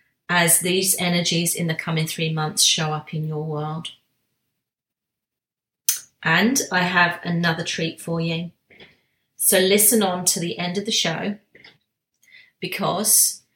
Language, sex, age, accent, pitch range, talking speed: English, female, 30-49, British, 165-190 Hz, 135 wpm